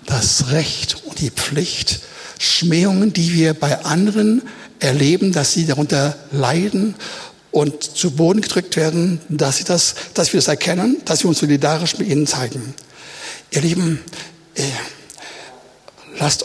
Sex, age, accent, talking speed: male, 60-79, German, 130 wpm